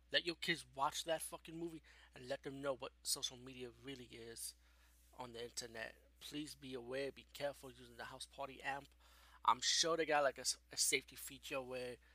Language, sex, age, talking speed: English, male, 20-39, 195 wpm